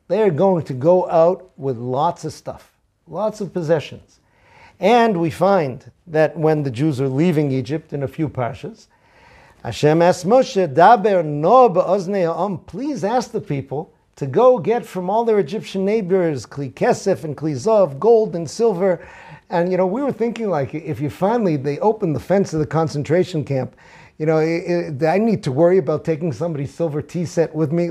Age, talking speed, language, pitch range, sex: 50-69, 180 wpm, English, 140-190 Hz, male